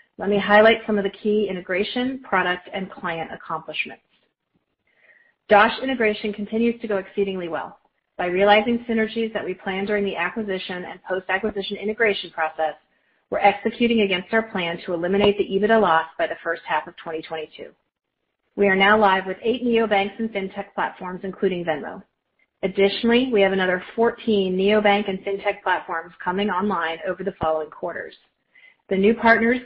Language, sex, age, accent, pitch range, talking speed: English, female, 40-59, American, 180-220 Hz, 160 wpm